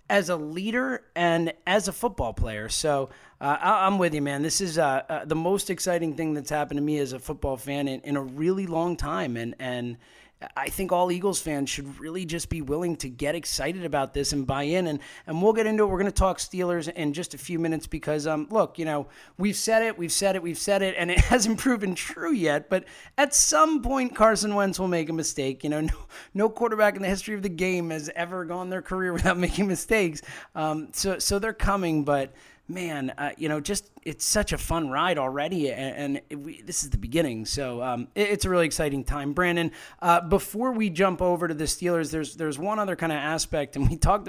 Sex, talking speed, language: male, 235 wpm, English